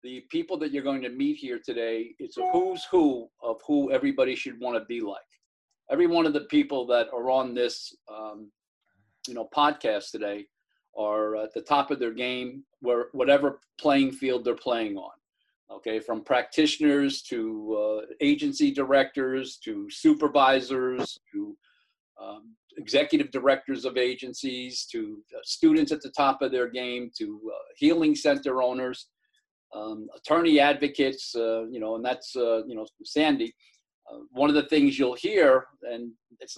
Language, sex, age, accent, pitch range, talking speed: English, male, 50-69, American, 120-180 Hz, 160 wpm